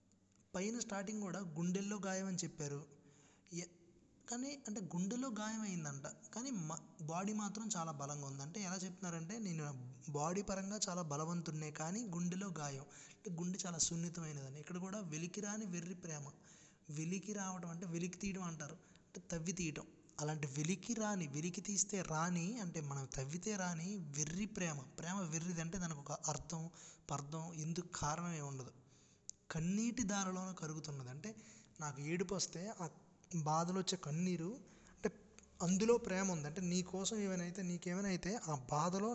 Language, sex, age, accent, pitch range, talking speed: Telugu, male, 20-39, native, 155-195 Hz, 145 wpm